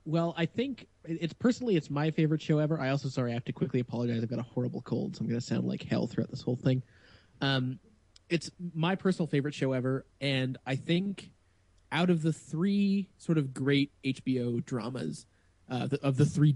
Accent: American